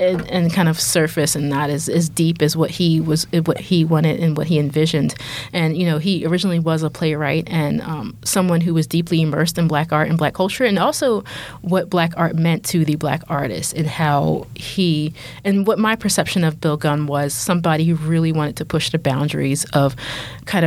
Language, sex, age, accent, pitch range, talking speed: English, female, 30-49, American, 150-175 Hz, 210 wpm